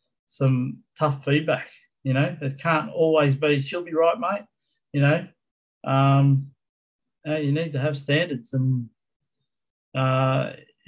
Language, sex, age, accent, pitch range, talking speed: English, male, 20-39, Australian, 125-145 Hz, 125 wpm